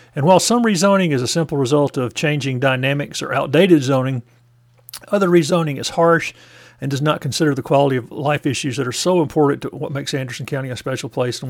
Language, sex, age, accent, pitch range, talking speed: English, male, 50-69, American, 135-160 Hz, 210 wpm